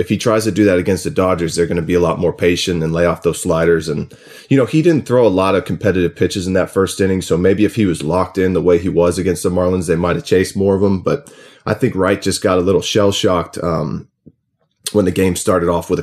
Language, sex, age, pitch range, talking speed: English, male, 30-49, 85-100 Hz, 275 wpm